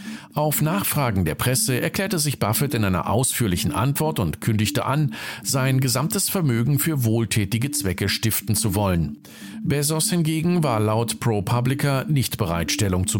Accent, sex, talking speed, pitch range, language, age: German, male, 145 wpm, 105-155 Hz, German, 50-69